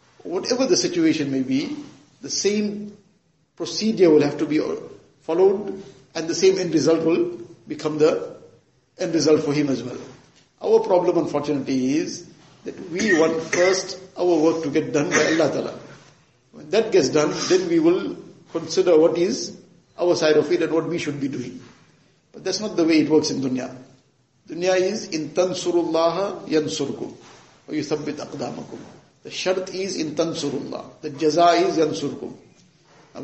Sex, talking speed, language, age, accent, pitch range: male, 160 wpm, English, 50-69, Indian, 150-185 Hz